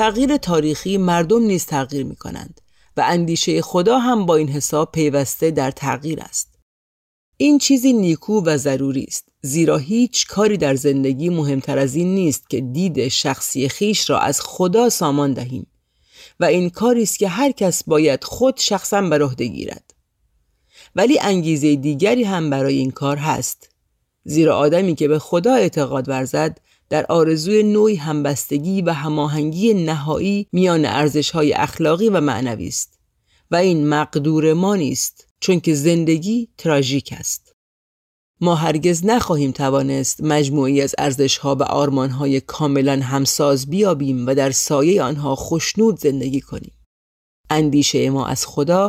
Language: Persian